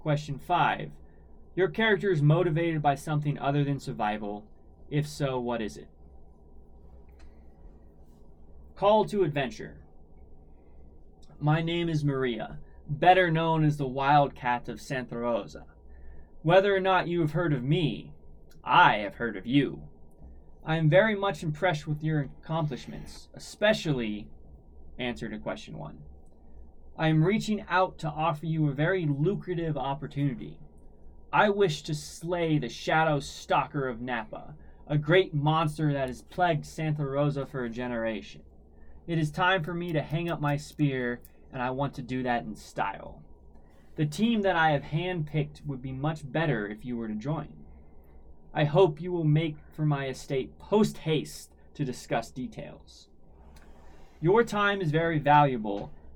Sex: male